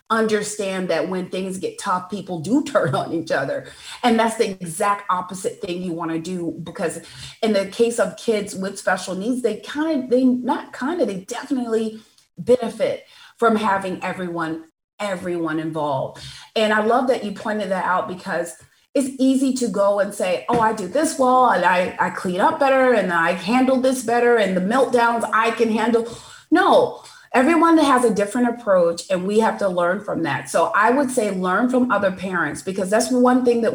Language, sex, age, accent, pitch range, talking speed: English, female, 30-49, American, 195-260 Hz, 195 wpm